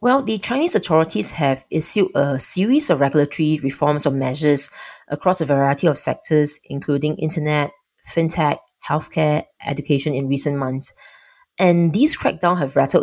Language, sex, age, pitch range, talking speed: English, female, 20-39, 145-180 Hz, 145 wpm